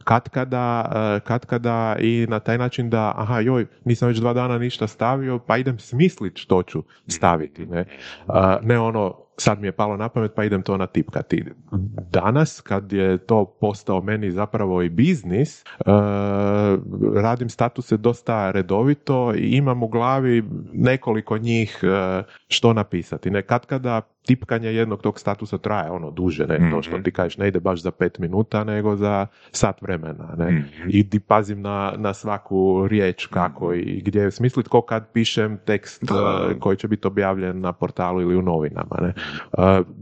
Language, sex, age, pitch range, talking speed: Croatian, male, 30-49, 95-115 Hz, 160 wpm